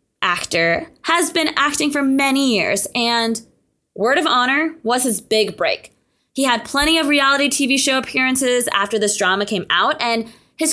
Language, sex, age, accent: English, female, 20-39, American